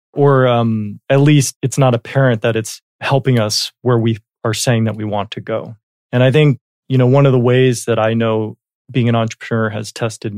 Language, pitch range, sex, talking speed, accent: English, 110-125 Hz, male, 215 wpm, American